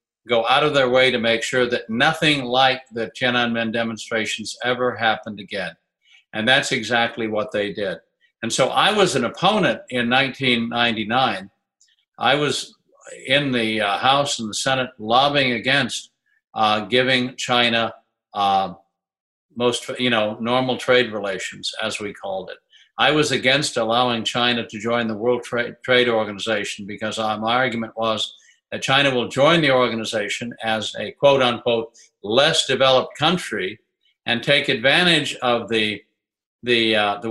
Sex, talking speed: male, 150 wpm